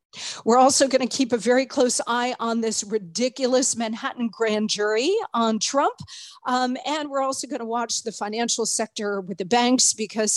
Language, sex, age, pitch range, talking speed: English, female, 40-59, 220-260 Hz, 180 wpm